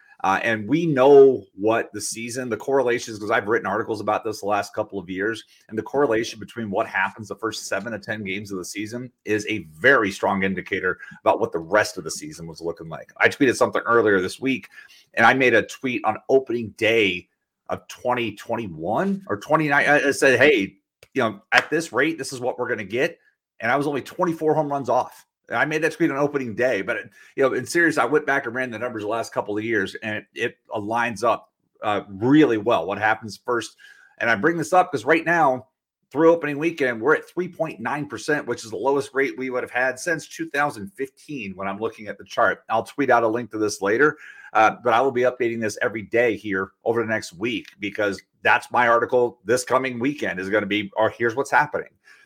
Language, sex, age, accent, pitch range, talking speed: English, male, 30-49, American, 110-145 Hz, 225 wpm